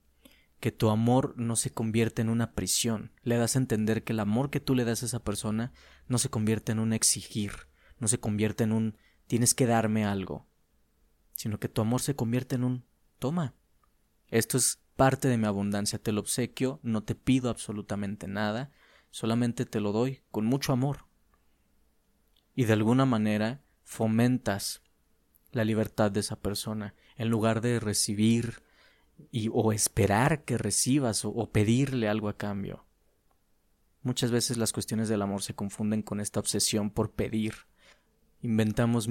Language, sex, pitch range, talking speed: Spanish, male, 105-120 Hz, 165 wpm